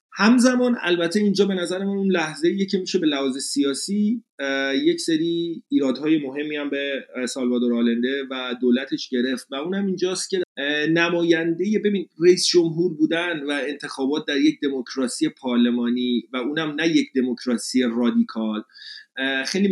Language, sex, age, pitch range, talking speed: Persian, male, 30-49, 135-180 Hz, 140 wpm